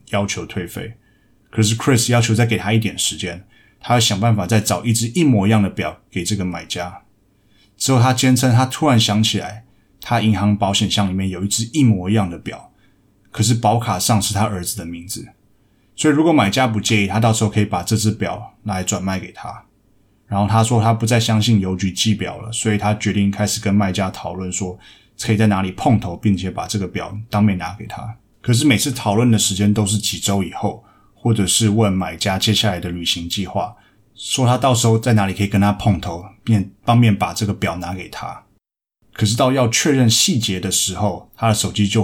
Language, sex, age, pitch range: Chinese, male, 20-39, 100-115 Hz